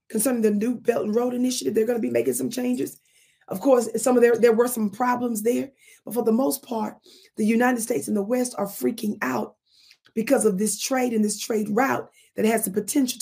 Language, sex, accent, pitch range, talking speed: English, female, American, 210-250 Hz, 225 wpm